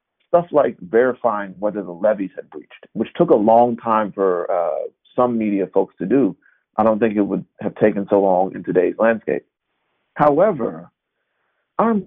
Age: 40-59